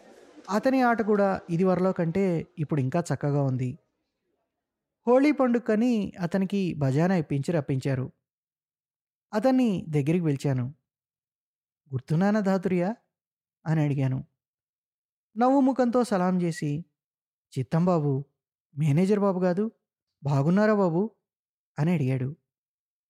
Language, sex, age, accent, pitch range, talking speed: Telugu, male, 20-39, native, 135-185 Hz, 90 wpm